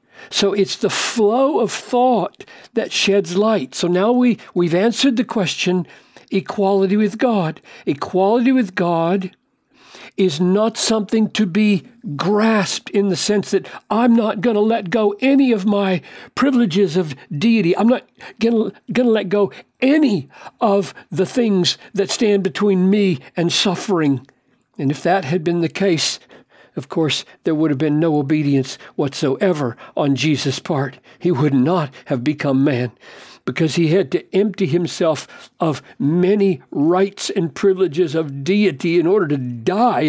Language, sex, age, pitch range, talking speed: English, male, 60-79, 165-215 Hz, 155 wpm